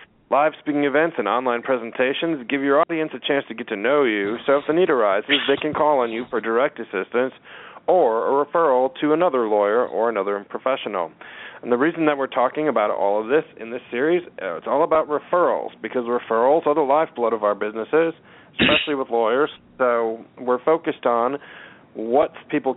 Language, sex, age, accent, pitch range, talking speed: English, male, 40-59, American, 120-155 Hz, 190 wpm